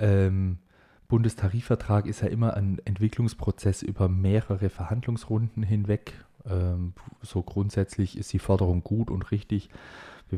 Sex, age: male, 20-39